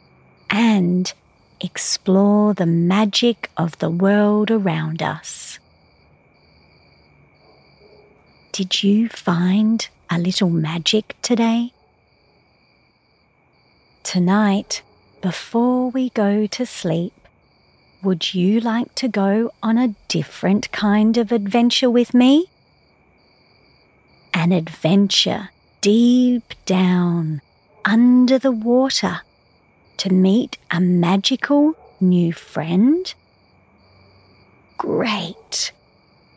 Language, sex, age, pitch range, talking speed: English, female, 40-59, 175-235 Hz, 80 wpm